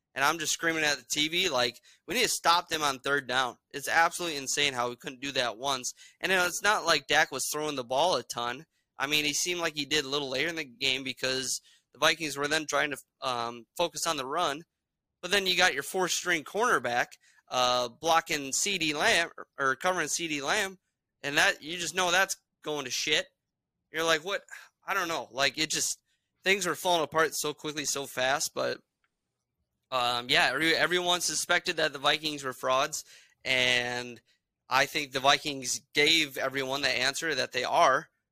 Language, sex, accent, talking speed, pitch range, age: English, male, American, 200 wpm, 130-155 Hz, 20-39